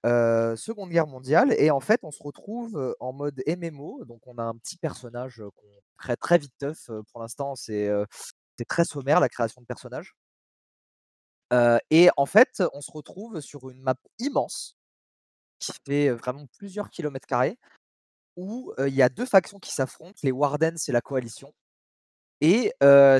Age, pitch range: 20-39, 130-175 Hz